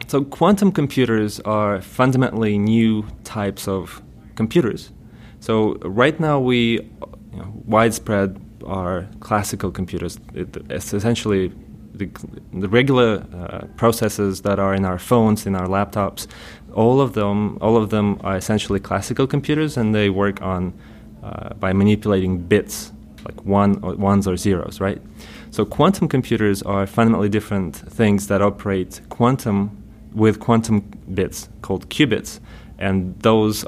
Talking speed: 135 wpm